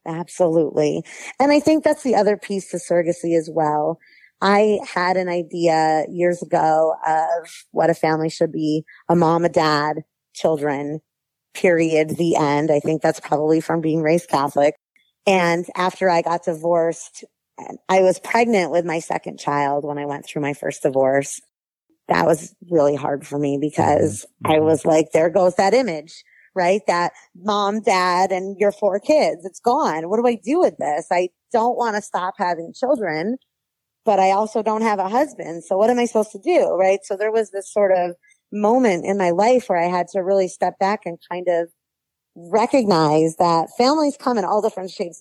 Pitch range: 160-205 Hz